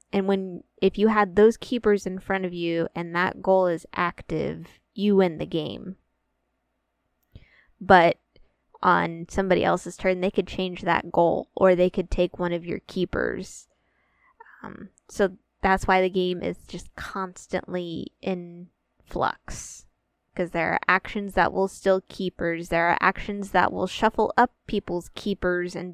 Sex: female